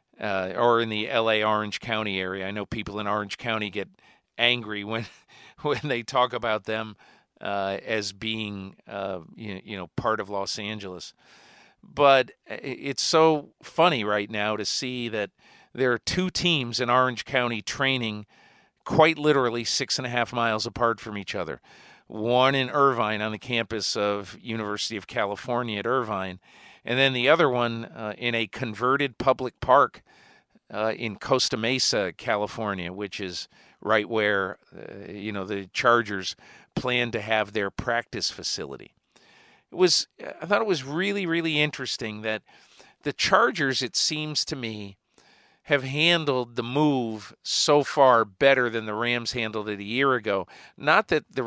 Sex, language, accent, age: male, English, American, 50-69